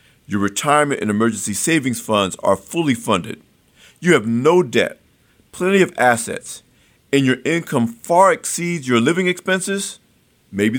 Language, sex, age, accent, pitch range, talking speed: English, male, 50-69, American, 115-170 Hz, 140 wpm